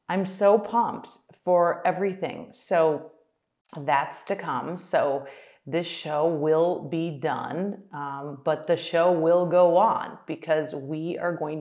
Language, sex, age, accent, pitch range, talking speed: English, female, 30-49, American, 140-165 Hz, 135 wpm